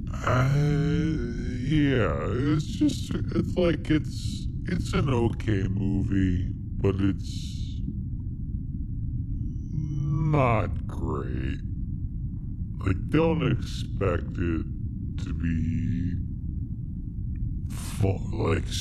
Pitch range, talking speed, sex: 85-110 Hz, 70 wpm, female